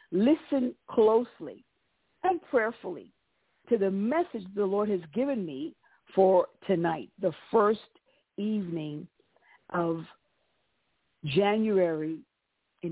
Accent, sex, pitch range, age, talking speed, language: American, female, 175-215 Hz, 50-69, 95 wpm, English